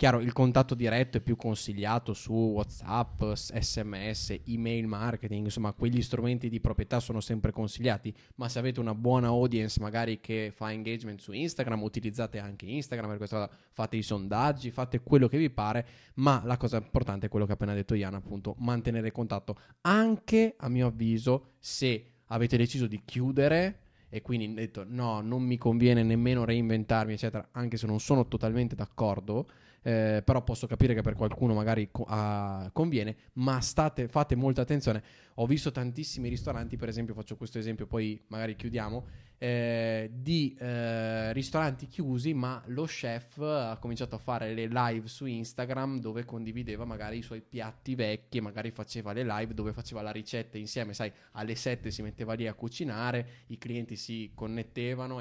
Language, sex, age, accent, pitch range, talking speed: Italian, male, 10-29, native, 110-125 Hz, 165 wpm